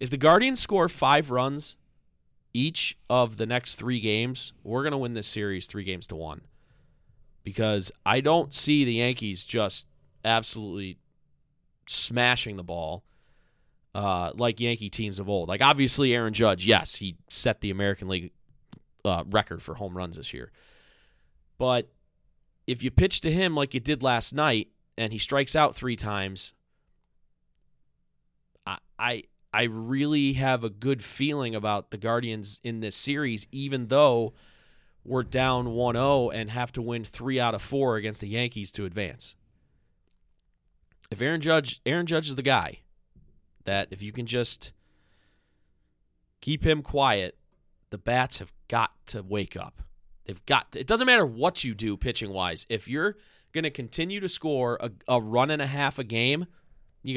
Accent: American